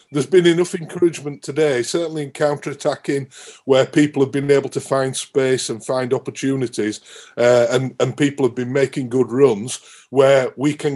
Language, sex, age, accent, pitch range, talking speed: English, male, 40-59, British, 130-155 Hz, 170 wpm